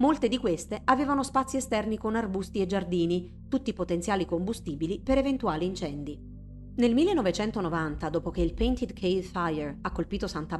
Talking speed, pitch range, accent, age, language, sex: 155 wpm, 170-230 Hz, native, 40-59, Italian, female